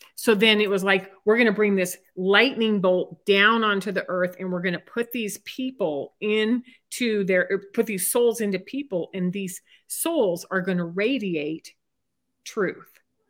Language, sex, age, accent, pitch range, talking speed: English, female, 40-59, American, 180-220 Hz, 175 wpm